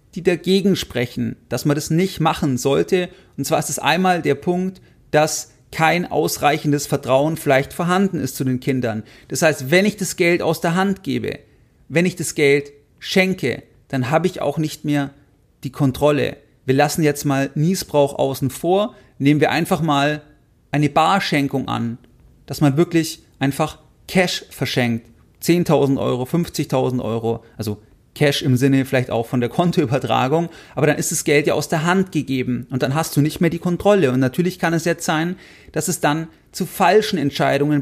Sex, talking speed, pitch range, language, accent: male, 180 wpm, 140-175 Hz, German, German